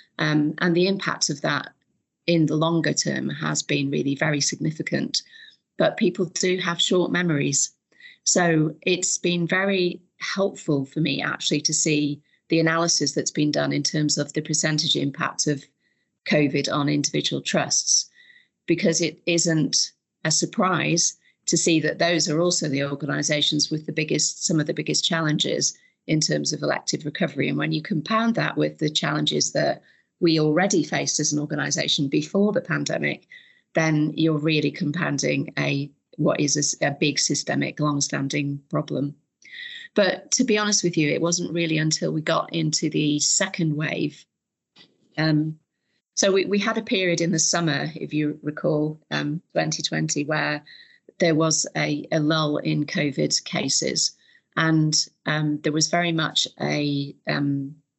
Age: 40-59